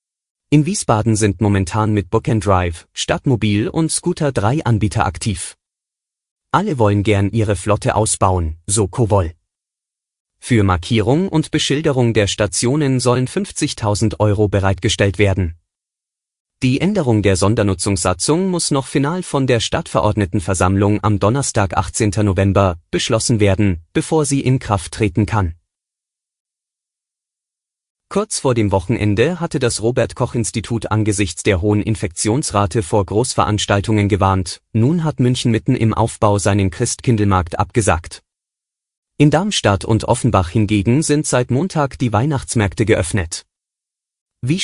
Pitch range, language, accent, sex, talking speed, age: 100-125 Hz, German, German, male, 120 wpm, 30-49